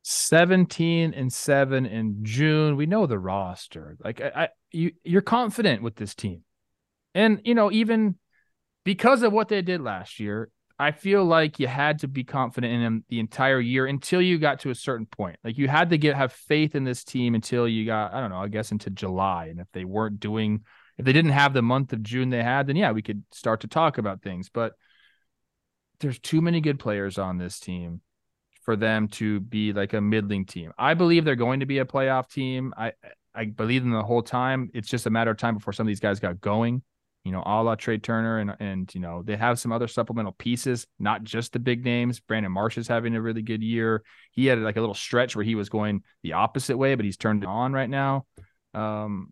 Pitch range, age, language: 105-135 Hz, 30-49, English